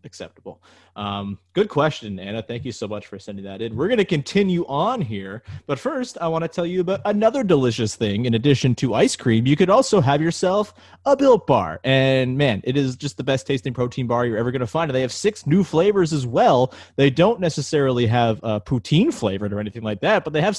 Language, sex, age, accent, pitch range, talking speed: English, male, 30-49, American, 115-155 Hz, 235 wpm